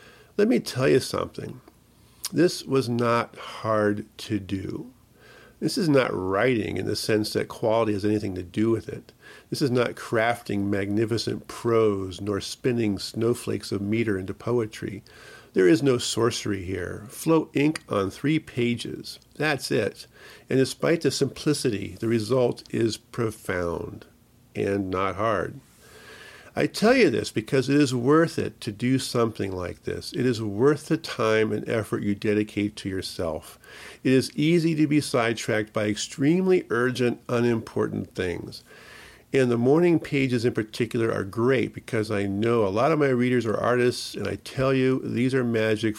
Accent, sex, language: American, male, English